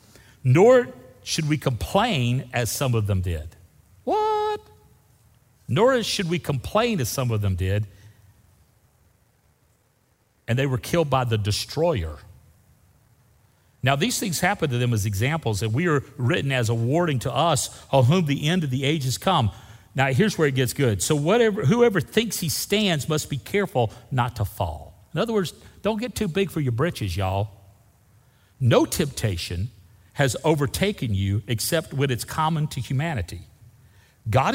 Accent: American